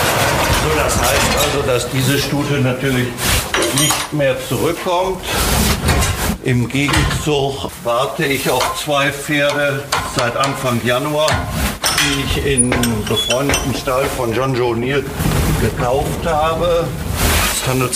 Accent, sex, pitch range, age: German, male, 120-140 Hz, 50-69